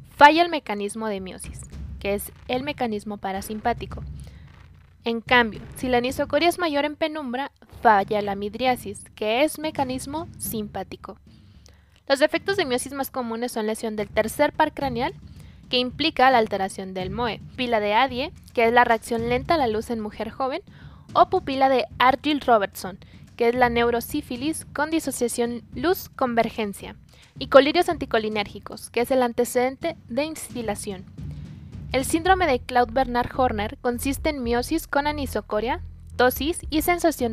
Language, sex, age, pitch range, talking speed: Spanish, female, 20-39, 215-275 Hz, 150 wpm